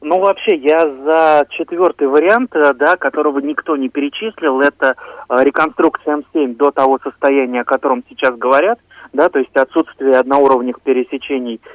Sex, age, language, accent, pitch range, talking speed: male, 30-49, Russian, native, 130-160 Hz, 145 wpm